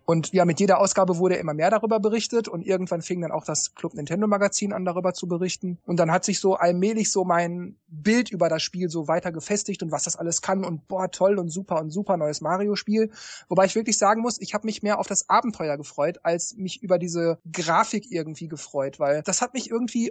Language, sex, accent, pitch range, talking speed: German, male, German, 170-215 Hz, 230 wpm